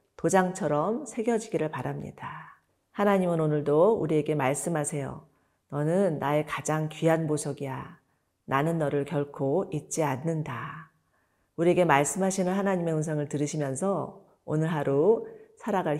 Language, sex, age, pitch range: Korean, female, 40-59, 145-190 Hz